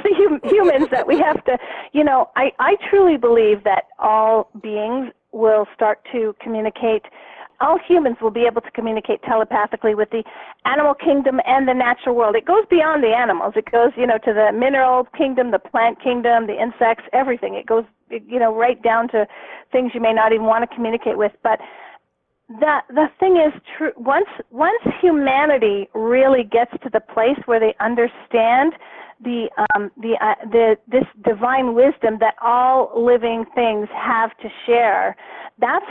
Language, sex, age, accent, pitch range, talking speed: English, female, 40-59, American, 225-270 Hz, 170 wpm